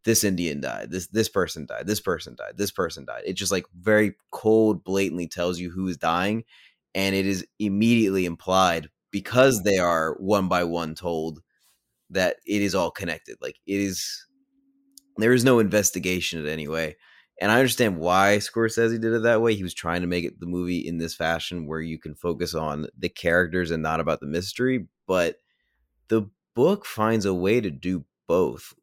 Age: 20-39